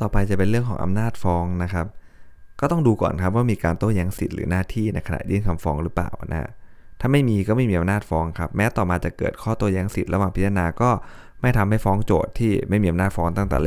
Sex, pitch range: male, 85-105 Hz